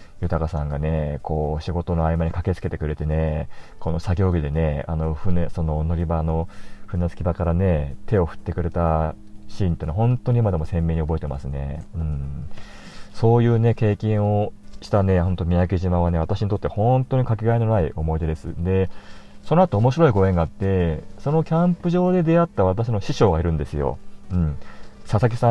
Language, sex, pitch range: Japanese, male, 80-110 Hz